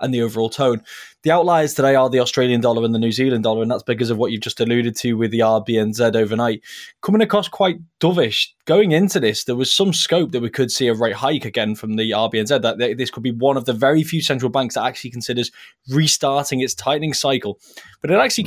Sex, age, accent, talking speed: male, 20-39, British, 235 wpm